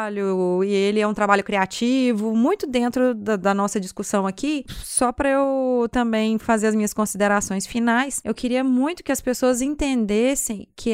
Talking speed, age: 165 wpm, 20-39